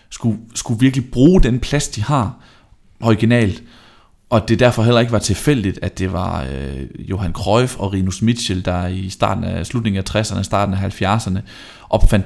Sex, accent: male, native